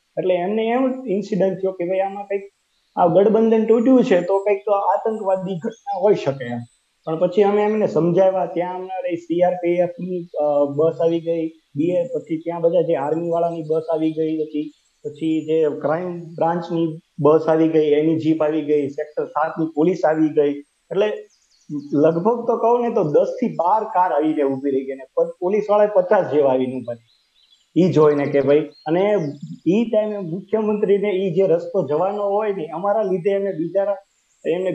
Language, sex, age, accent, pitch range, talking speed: Gujarati, male, 30-49, native, 150-200 Hz, 170 wpm